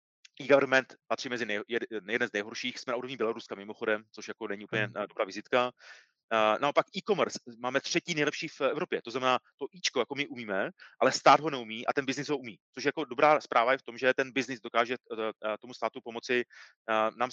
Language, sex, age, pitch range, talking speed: Czech, male, 30-49, 115-135 Hz, 195 wpm